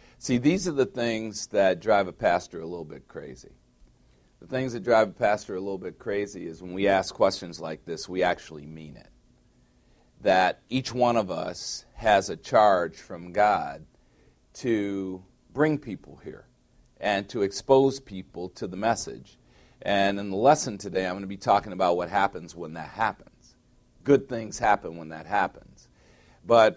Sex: male